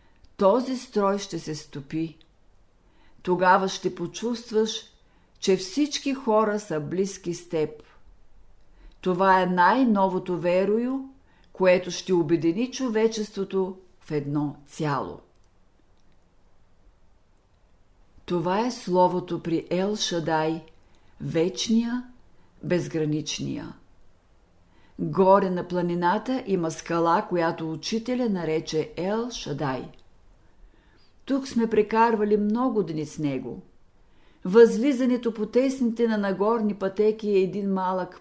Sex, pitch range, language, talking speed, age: female, 155-220 Hz, Bulgarian, 95 wpm, 50-69